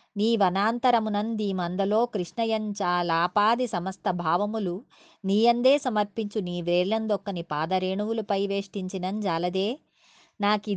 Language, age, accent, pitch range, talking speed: Telugu, 20-39, native, 175-225 Hz, 95 wpm